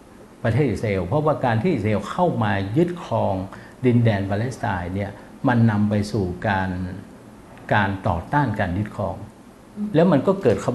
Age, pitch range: 60-79, 100-135 Hz